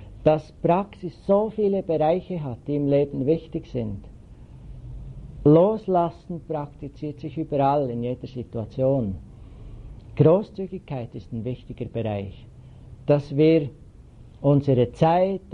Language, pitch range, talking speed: English, 125-165 Hz, 105 wpm